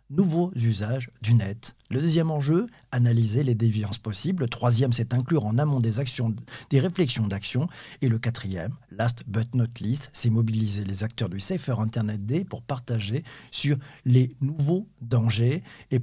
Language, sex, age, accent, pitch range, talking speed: French, male, 50-69, French, 115-150 Hz, 160 wpm